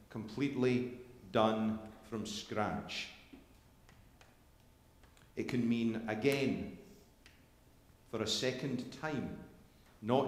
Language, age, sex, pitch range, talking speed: English, 40-59, male, 95-115 Hz, 75 wpm